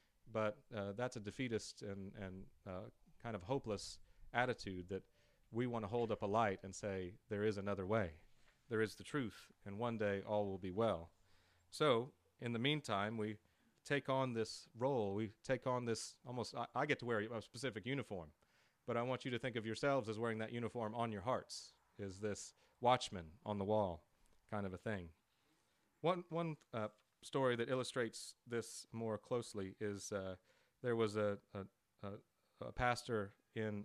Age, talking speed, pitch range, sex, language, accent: 30-49, 185 wpm, 100-120 Hz, male, English, American